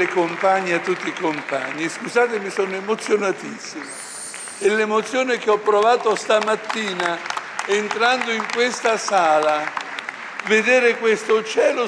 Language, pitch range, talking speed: Italian, 175-225 Hz, 110 wpm